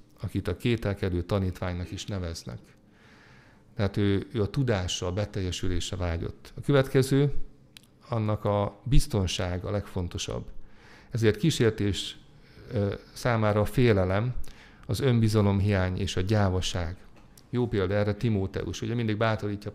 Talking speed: 115 wpm